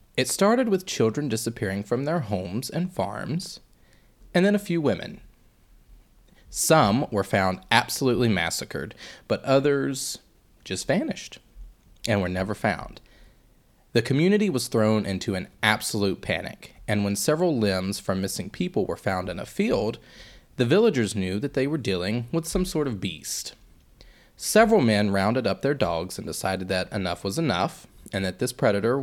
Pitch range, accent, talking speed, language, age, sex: 100-135 Hz, American, 155 wpm, English, 30-49, male